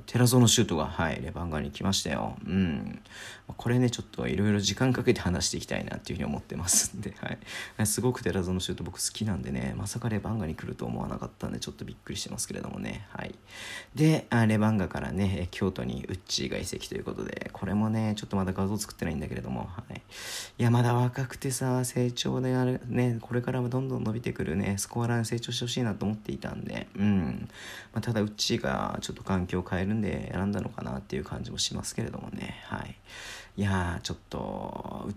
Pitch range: 95-120 Hz